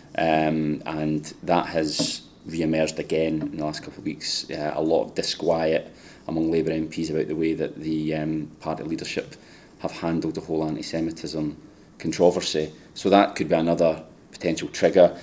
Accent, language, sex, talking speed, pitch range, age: British, English, male, 160 wpm, 80-85 Hz, 30-49